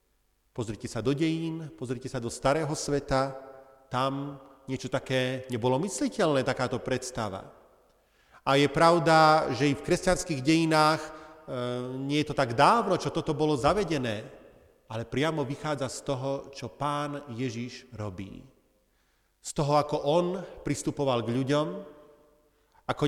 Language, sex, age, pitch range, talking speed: Slovak, male, 40-59, 130-160 Hz, 135 wpm